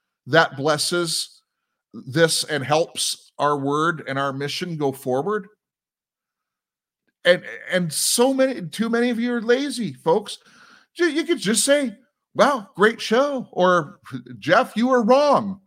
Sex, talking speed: male, 140 wpm